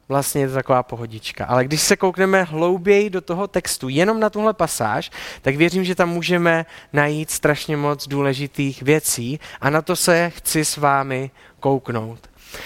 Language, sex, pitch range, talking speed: Czech, male, 140-170 Hz, 165 wpm